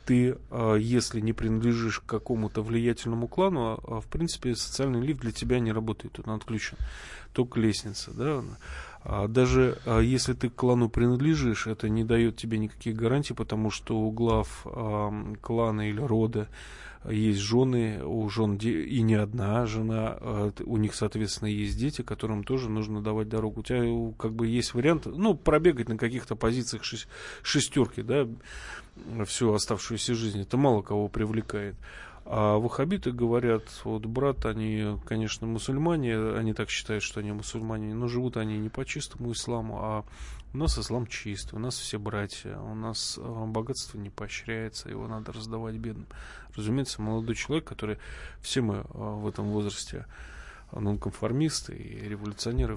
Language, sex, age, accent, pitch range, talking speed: Russian, male, 20-39, native, 105-120 Hz, 145 wpm